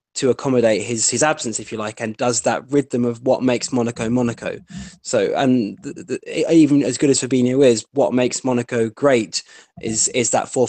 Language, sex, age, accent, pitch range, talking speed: English, male, 20-39, British, 115-140 Hz, 190 wpm